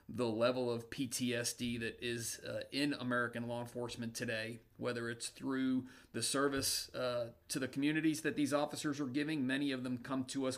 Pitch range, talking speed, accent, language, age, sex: 115-130 Hz, 180 wpm, American, English, 40-59, male